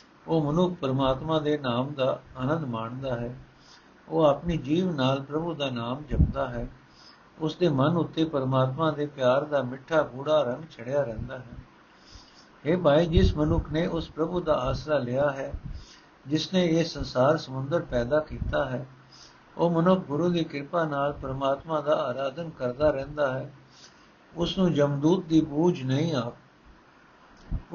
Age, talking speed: 60-79, 150 wpm